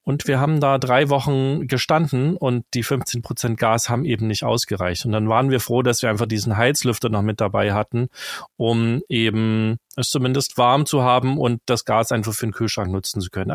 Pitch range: 115-145 Hz